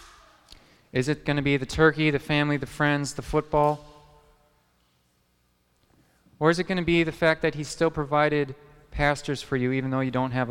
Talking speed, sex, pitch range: 190 wpm, male, 110-150 Hz